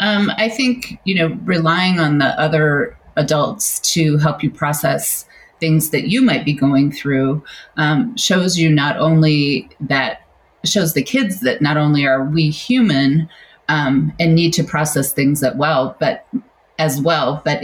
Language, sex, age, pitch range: English, female, 30-49, 140-170 Hz